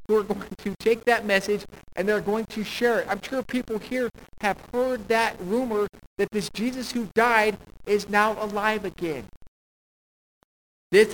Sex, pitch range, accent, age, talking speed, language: male, 165-215 Hz, American, 50-69, 160 wpm, English